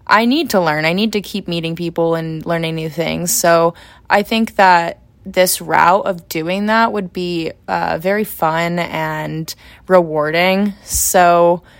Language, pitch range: English, 180-235 Hz